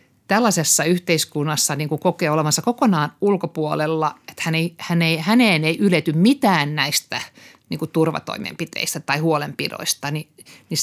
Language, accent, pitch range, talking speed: Finnish, native, 150-180 Hz, 95 wpm